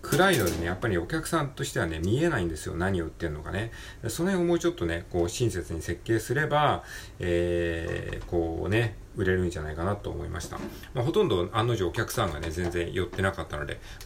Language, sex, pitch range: Japanese, male, 85-115 Hz